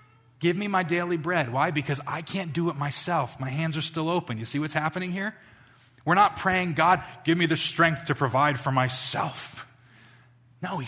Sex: male